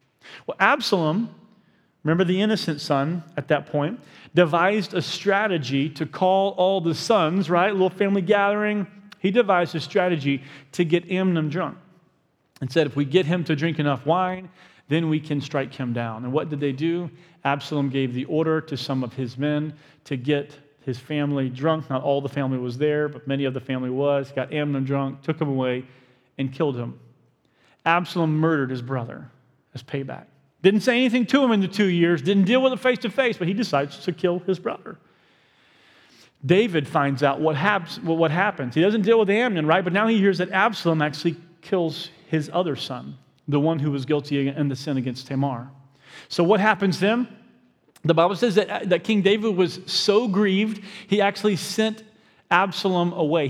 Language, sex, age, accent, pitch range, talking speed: English, male, 40-59, American, 140-190 Hz, 190 wpm